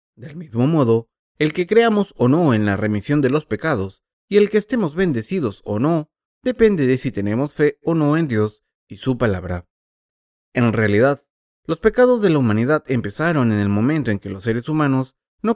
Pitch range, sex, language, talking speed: 105-150 Hz, male, Spanish, 195 wpm